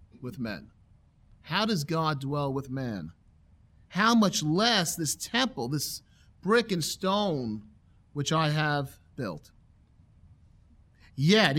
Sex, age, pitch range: male, 40-59, 125-190 Hz